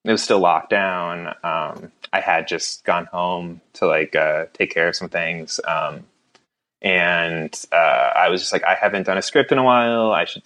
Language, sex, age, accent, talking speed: English, male, 20-39, American, 205 wpm